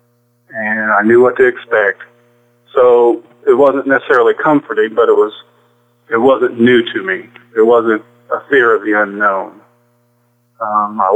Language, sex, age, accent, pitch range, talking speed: English, male, 30-49, American, 110-130 Hz, 150 wpm